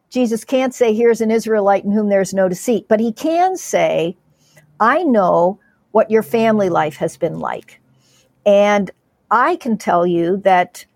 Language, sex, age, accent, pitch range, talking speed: English, female, 50-69, American, 180-220 Hz, 165 wpm